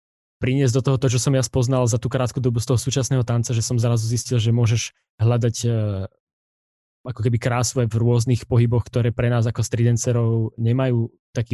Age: 20-39